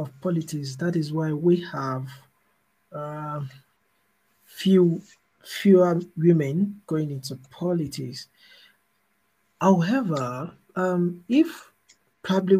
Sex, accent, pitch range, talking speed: male, Nigerian, 135-175 Hz, 85 wpm